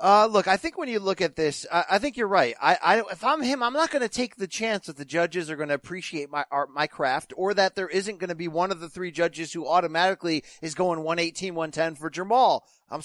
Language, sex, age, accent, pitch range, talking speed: English, male, 30-49, American, 165-225 Hz, 260 wpm